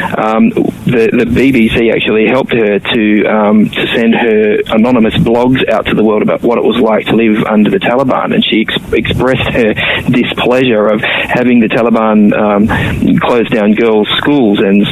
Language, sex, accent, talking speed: English, male, Australian, 175 wpm